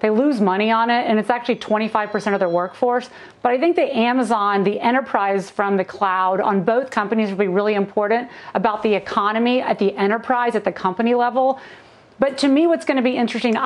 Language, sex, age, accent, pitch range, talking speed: English, female, 40-59, American, 205-245 Hz, 205 wpm